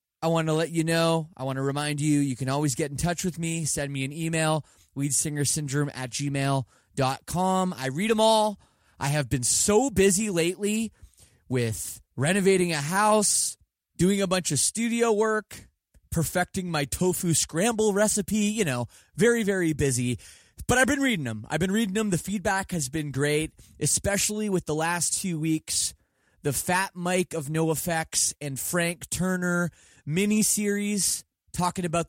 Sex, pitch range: male, 140-185 Hz